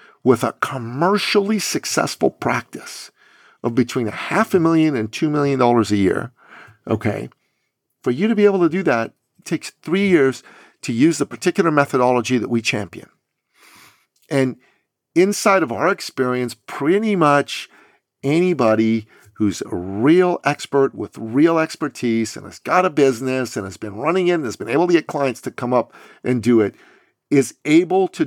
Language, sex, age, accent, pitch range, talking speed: English, male, 50-69, American, 115-175 Hz, 165 wpm